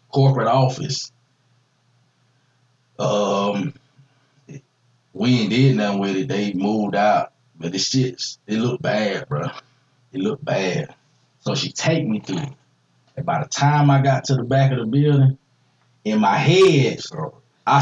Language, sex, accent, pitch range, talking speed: English, male, American, 125-140 Hz, 145 wpm